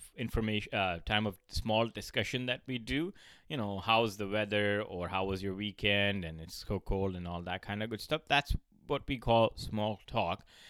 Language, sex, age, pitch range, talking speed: English, male, 20-39, 95-120 Hz, 200 wpm